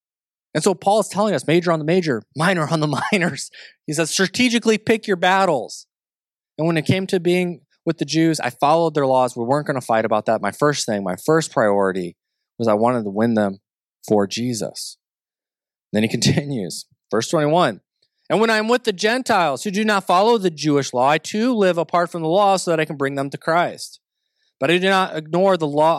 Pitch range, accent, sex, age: 135-195 Hz, American, male, 20-39